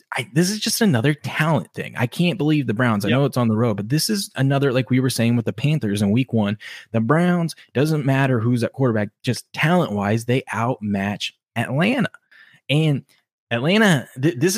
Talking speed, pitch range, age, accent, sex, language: 195 wpm, 105-140 Hz, 20-39, American, male, English